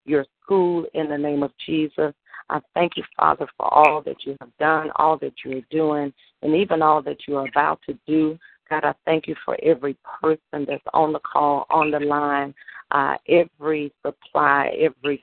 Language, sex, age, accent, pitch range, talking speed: English, female, 40-59, American, 145-155 Hz, 195 wpm